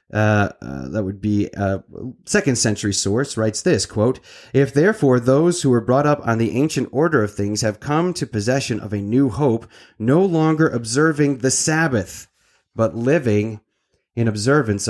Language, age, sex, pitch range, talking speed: English, 30-49, male, 100-135 Hz, 175 wpm